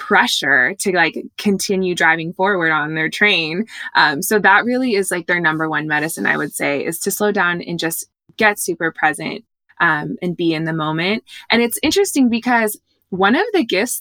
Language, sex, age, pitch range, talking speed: English, female, 20-39, 175-215 Hz, 195 wpm